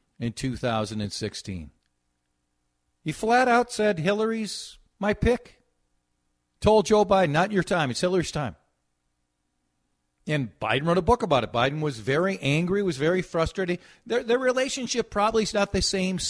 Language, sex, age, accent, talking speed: English, male, 50-69, American, 145 wpm